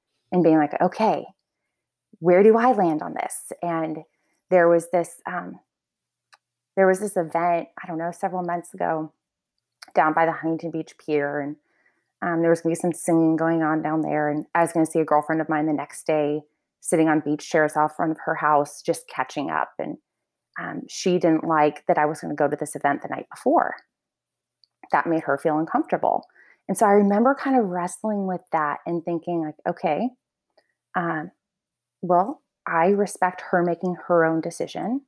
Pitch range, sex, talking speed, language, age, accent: 160-195 Hz, female, 190 wpm, English, 20-39, American